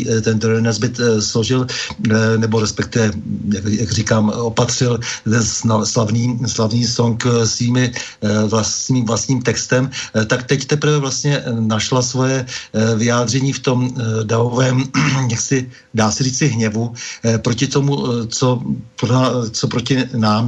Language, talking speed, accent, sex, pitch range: Czech, 110 wpm, native, male, 110-125 Hz